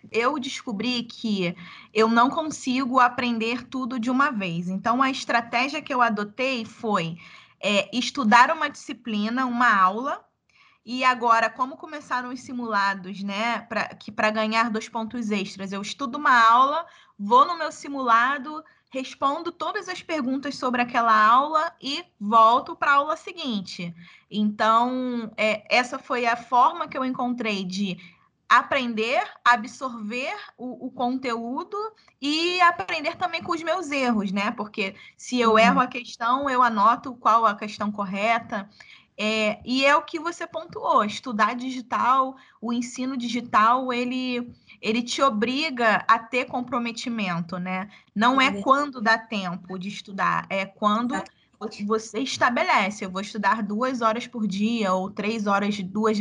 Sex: female